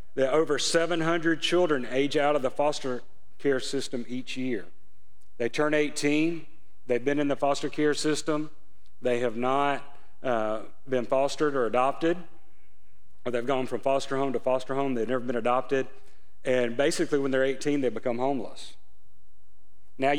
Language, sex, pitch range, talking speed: English, male, 115-140 Hz, 160 wpm